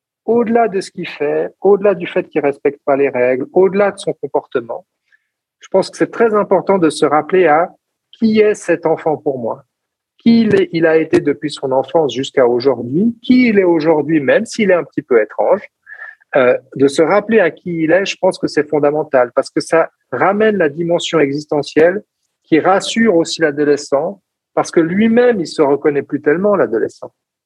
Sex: male